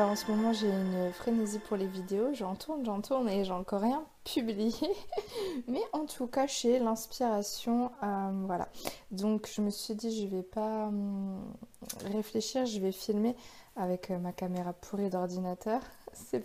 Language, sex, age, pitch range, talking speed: French, female, 20-39, 195-230 Hz, 165 wpm